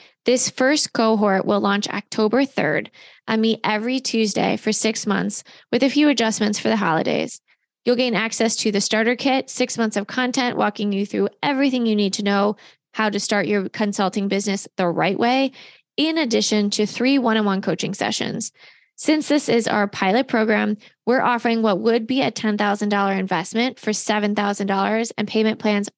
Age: 20-39